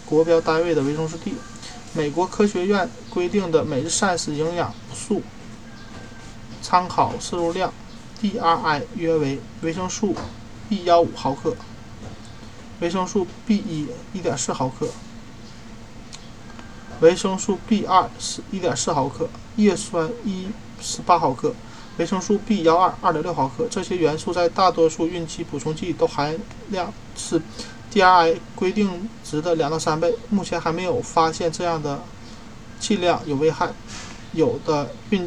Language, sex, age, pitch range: Chinese, male, 20-39, 120-180 Hz